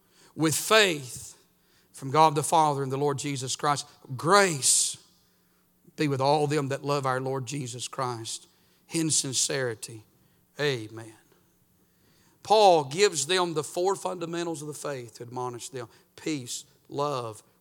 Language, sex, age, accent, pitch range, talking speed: English, male, 50-69, American, 125-160 Hz, 135 wpm